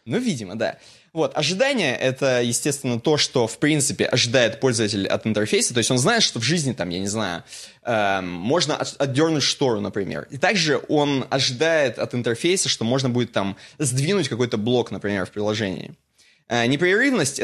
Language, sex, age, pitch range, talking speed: Russian, male, 20-39, 110-140 Hz, 160 wpm